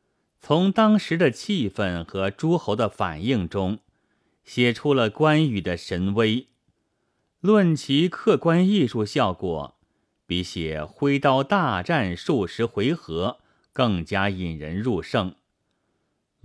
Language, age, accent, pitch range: Chinese, 30-49, native, 90-145 Hz